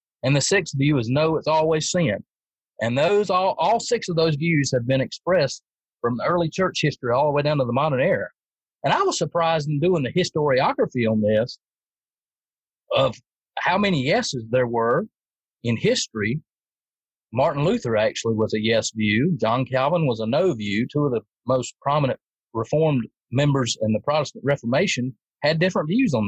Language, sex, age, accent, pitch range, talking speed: English, male, 40-59, American, 125-175 Hz, 180 wpm